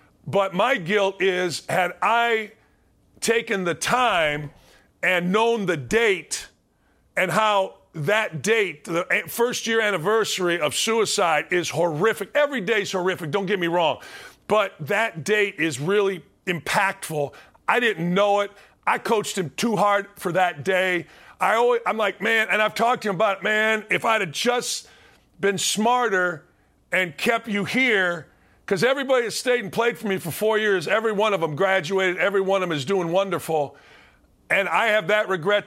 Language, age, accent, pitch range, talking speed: English, 40-59, American, 175-215 Hz, 170 wpm